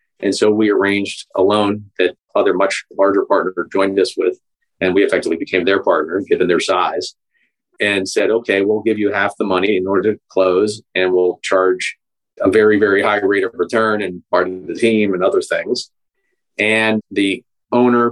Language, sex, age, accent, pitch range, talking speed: English, male, 40-59, American, 100-125 Hz, 190 wpm